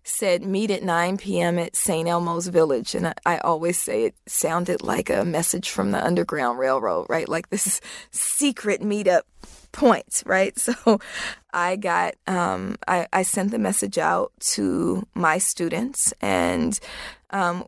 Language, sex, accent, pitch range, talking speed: English, female, American, 170-200 Hz, 155 wpm